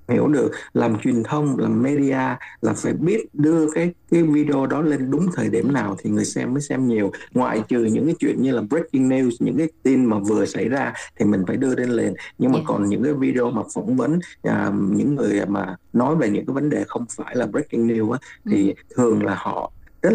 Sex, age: male, 60-79